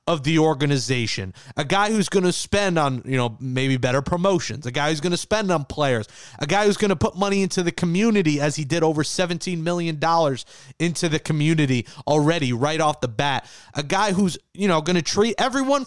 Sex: male